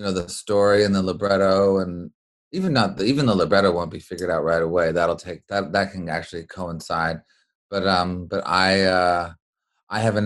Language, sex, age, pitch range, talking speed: English, male, 30-49, 90-100 Hz, 195 wpm